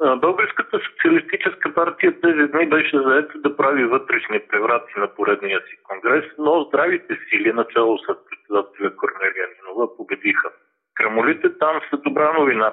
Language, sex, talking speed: Bulgarian, male, 130 wpm